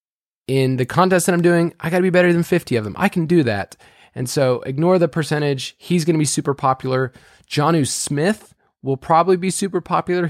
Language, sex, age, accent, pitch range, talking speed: English, male, 20-39, American, 135-165 Hz, 205 wpm